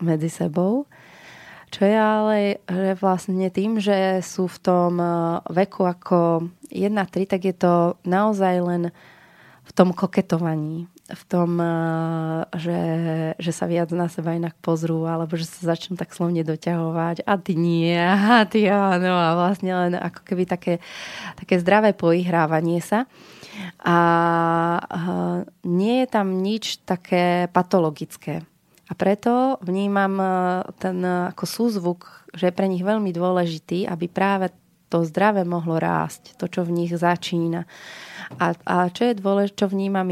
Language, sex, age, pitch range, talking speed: Slovak, female, 20-39, 170-190 Hz, 140 wpm